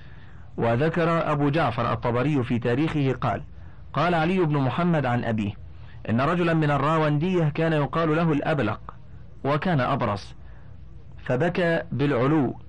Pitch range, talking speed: 120-155 Hz, 120 wpm